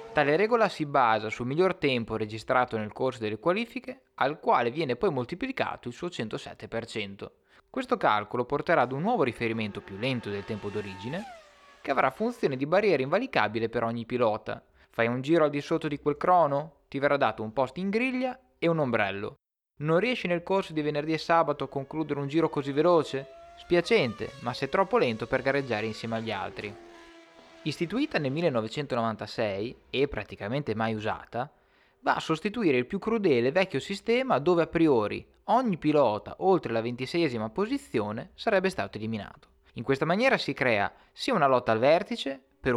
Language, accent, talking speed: Italian, native, 170 wpm